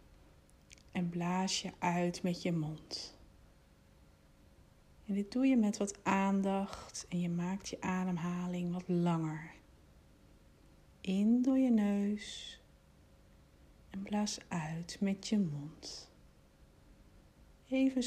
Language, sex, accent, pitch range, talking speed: Dutch, female, Dutch, 155-205 Hz, 105 wpm